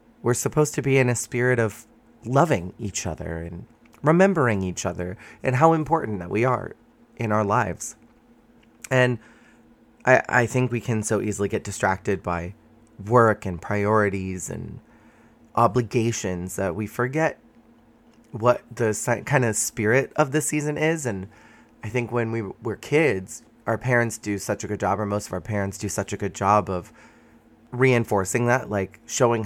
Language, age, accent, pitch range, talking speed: English, 30-49, American, 100-125 Hz, 165 wpm